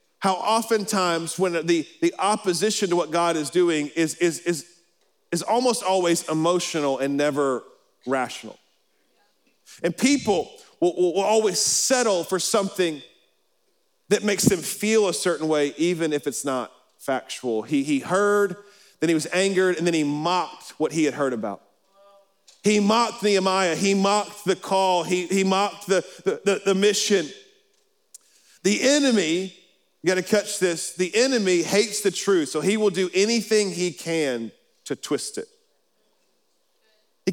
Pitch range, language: 170-210 Hz, English